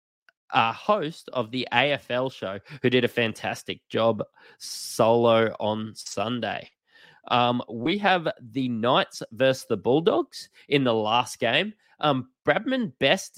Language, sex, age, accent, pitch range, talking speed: English, male, 20-39, Australian, 120-145 Hz, 135 wpm